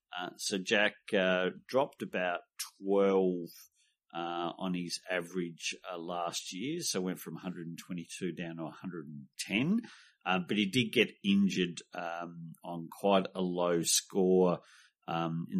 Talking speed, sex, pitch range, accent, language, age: 135 wpm, male, 85-100 Hz, Australian, English, 50-69